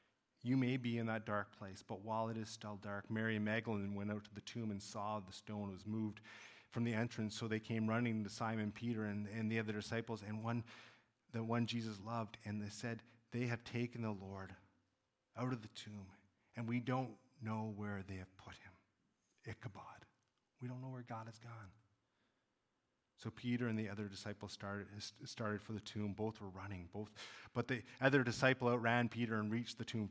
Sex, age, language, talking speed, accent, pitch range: male, 30-49, English, 205 wpm, American, 105-115 Hz